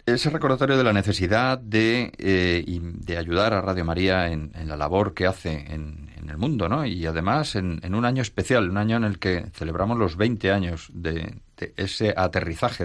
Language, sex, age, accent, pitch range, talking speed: Spanish, male, 40-59, Spanish, 85-105 Hz, 205 wpm